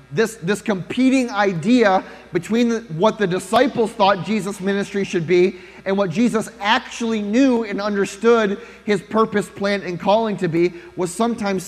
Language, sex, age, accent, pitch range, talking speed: English, male, 30-49, American, 165-215 Hz, 155 wpm